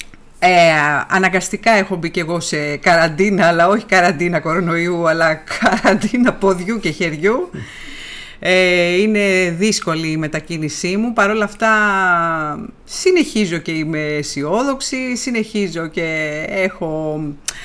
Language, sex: Greek, female